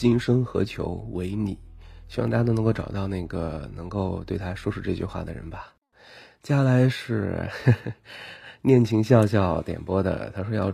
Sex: male